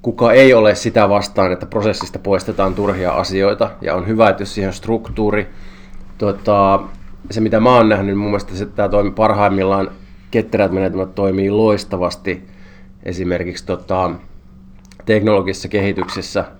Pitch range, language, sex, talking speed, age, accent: 95-105 Hz, Finnish, male, 125 wpm, 20-39, native